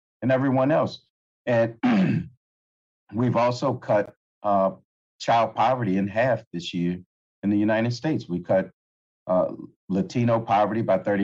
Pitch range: 90-120 Hz